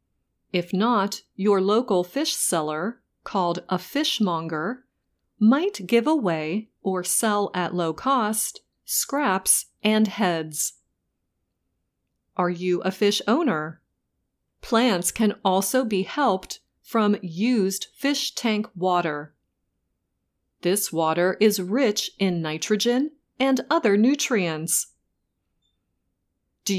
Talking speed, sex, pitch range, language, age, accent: 100 wpm, female, 160-230 Hz, English, 40-59, American